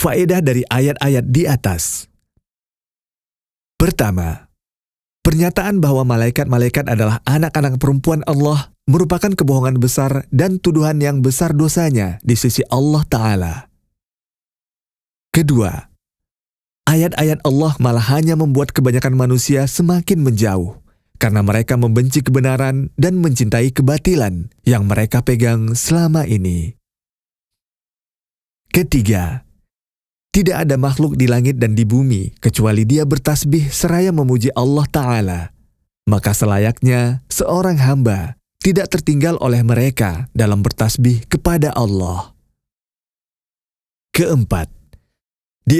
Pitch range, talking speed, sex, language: 110-150 Hz, 100 wpm, male, Indonesian